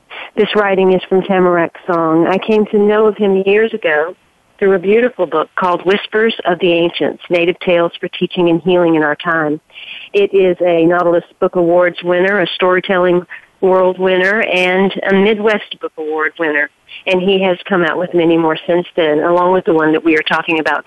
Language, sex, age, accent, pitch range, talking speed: English, female, 50-69, American, 170-210 Hz, 195 wpm